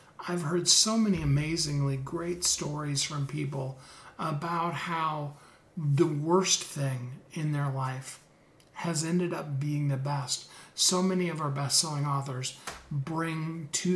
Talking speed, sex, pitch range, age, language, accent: 135 wpm, male, 145-190 Hz, 40-59, English, American